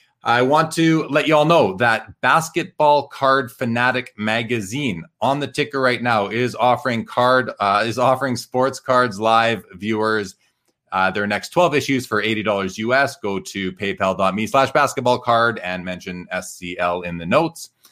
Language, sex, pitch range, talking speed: English, male, 100-130 Hz, 155 wpm